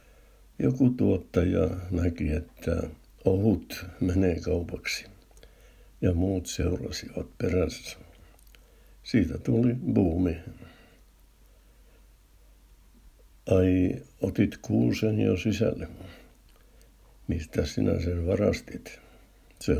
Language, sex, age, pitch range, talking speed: Finnish, male, 60-79, 85-100 Hz, 75 wpm